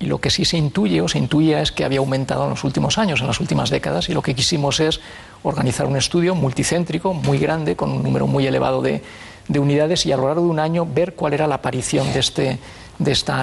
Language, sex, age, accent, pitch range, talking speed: Spanish, male, 40-59, Spanish, 130-155 Hz, 245 wpm